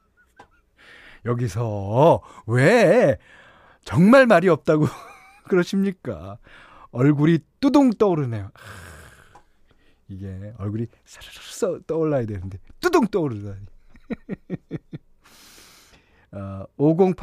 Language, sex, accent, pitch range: Korean, male, native, 100-145 Hz